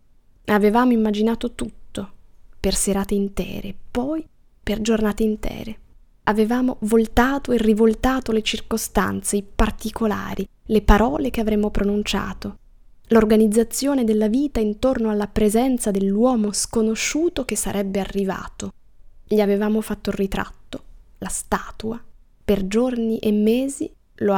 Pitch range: 200-230 Hz